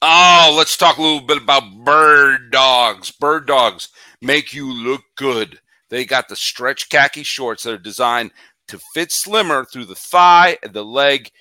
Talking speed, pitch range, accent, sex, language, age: 175 wpm, 130-185 Hz, American, male, English, 50-69